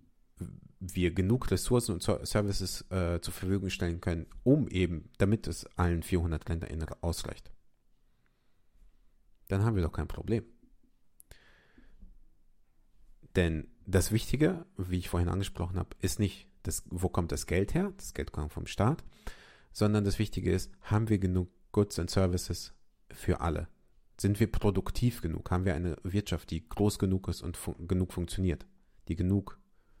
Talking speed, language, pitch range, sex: 150 wpm, German, 85-100 Hz, male